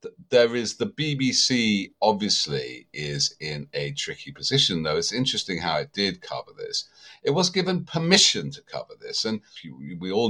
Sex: male